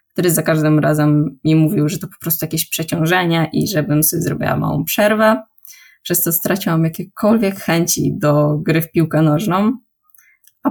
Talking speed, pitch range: 165 wpm, 160-200 Hz